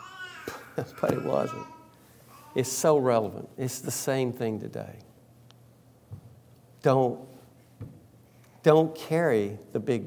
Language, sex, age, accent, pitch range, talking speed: English, male, 50-69, American, 110-125 Hz, 95 wpm